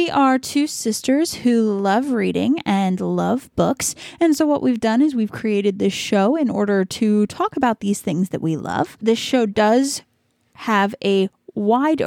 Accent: American